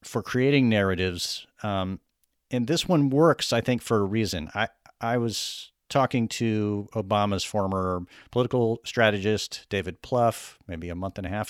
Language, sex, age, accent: English, male, 40-59, American